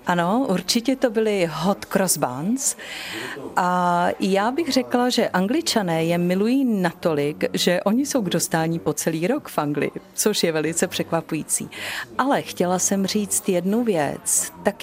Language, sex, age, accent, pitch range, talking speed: Czech, female, 40-59, native, 165-215 Hz, 145 wpm